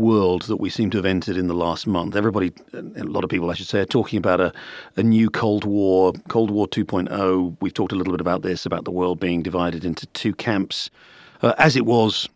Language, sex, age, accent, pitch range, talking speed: English, male, 40-59, British, 100-135 Hz, 240 wpm